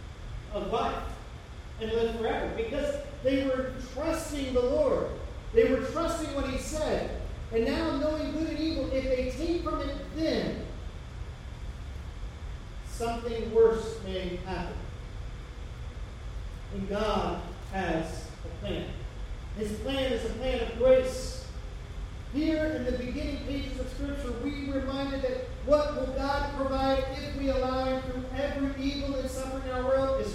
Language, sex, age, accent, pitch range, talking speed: English, male, 40-59, American, 225-280 Hz, 135 wpm